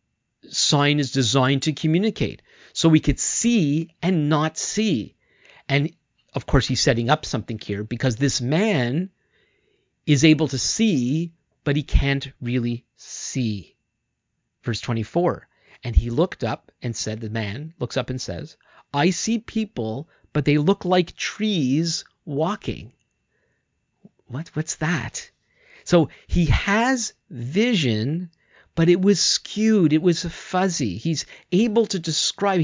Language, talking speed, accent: English, 135 wpm, American